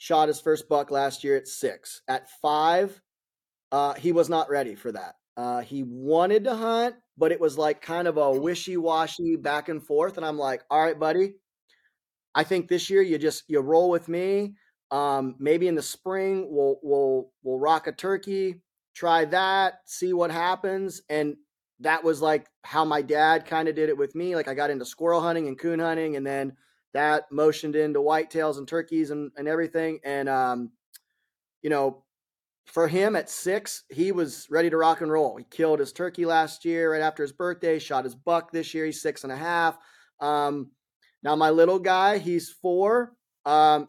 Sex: male